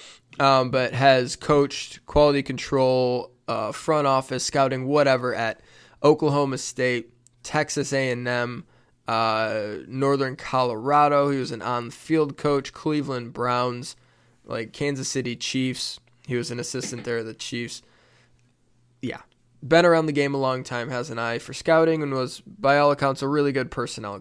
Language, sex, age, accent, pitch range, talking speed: English, male, 20-39, American, 120-145 Hz, 145 wpm